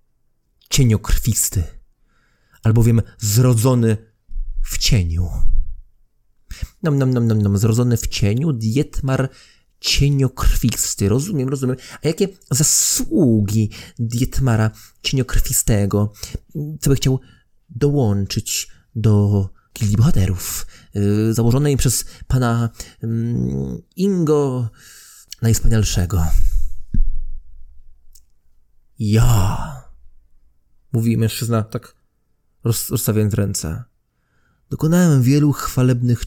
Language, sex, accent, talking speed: English, male, Polish, 75 wpm